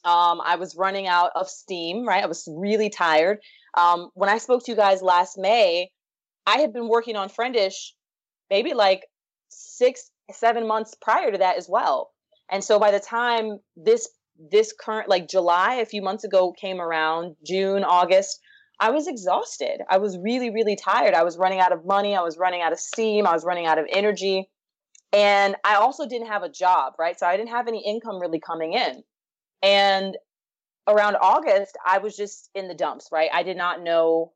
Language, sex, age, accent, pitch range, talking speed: English, female, 20-39, American, 175-215 Hz, 195 wpm